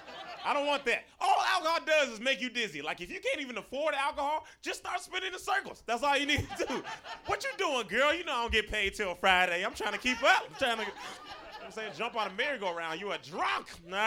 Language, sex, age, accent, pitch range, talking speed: English, male, 20-39, American, 200-280 Hz, 250 wpm